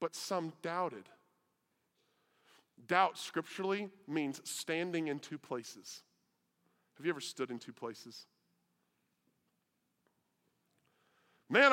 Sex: male